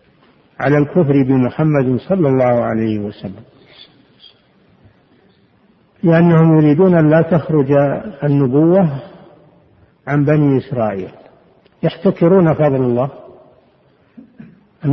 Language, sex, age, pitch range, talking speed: Arabic, male, 60-79, 125-165 Hz, 80 wpm